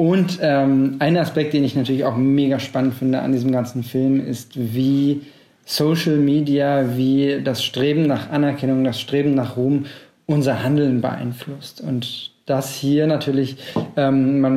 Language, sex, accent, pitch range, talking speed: German, male, German, 130-140 Hz, 150 wpm